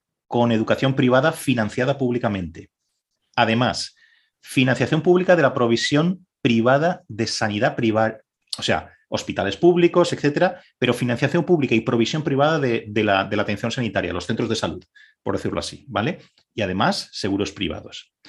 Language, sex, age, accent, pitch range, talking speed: Spanish, male, 30-49, Spanish, 105-140 Hz, 145 wpm